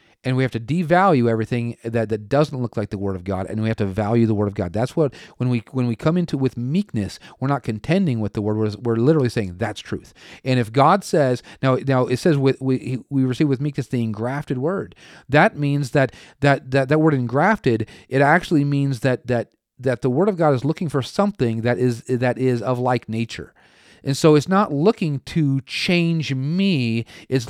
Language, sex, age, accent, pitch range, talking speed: English, male, 40-59, American, 120-165 Hz, 220 wpm